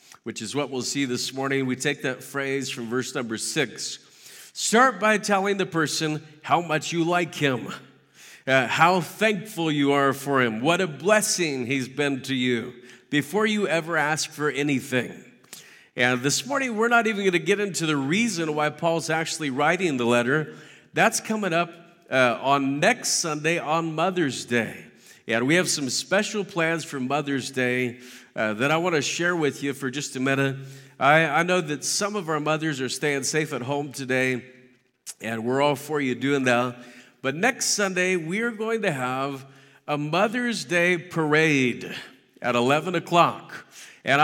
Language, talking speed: English, 175 wpm